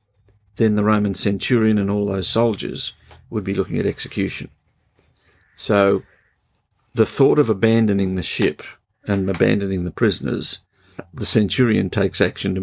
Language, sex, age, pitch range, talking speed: English, male, 50-69, 95-115 Hz, 140 wpm